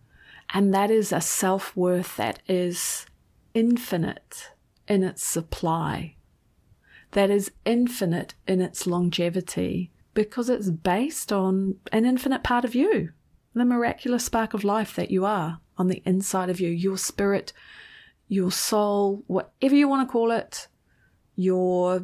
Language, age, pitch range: English, 30-49, 180-215 Hz